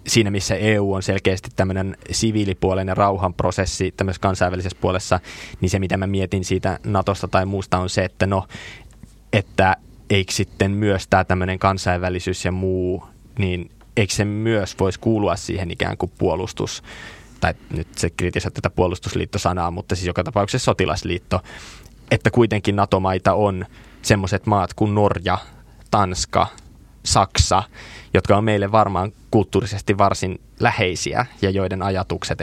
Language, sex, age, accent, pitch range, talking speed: Finnish, male, 20-39, native, 90-105 Hz, 145 wpm